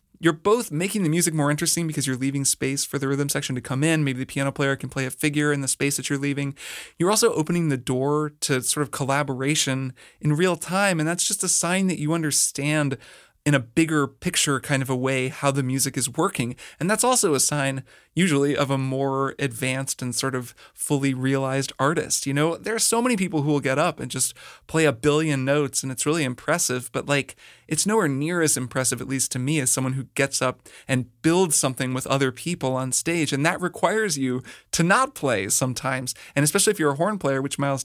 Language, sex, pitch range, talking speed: English, male, 135-160 Hz, 225 wpm